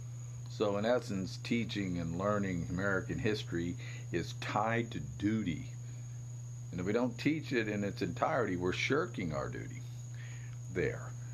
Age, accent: 50-69, American